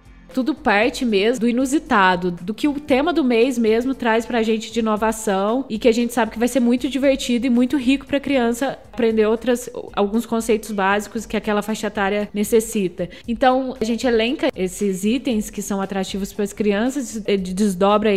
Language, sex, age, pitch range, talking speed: Portuguese, female, 10-29, 200-255 Hz, 190 wpm